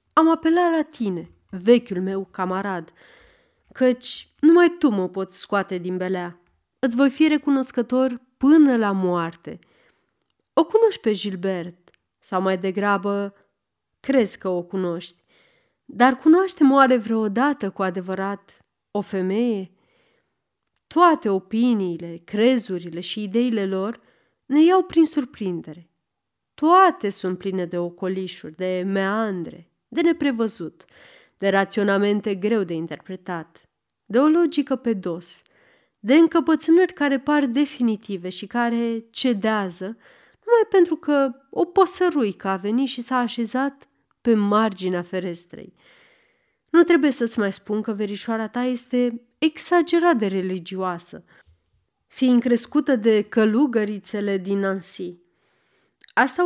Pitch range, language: 190-280 Hz, Romanian